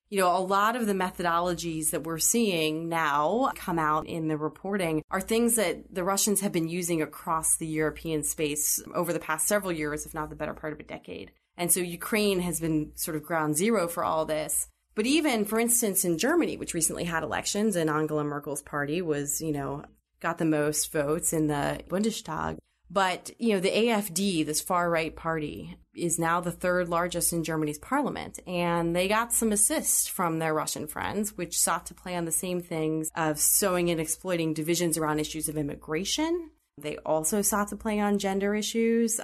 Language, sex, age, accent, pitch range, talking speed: English, female, 30-49, American, 155-200 Hz, 195 wpm